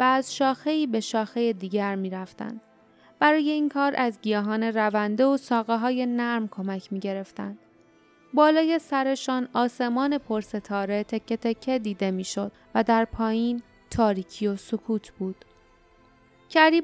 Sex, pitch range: female, 205-260 Hz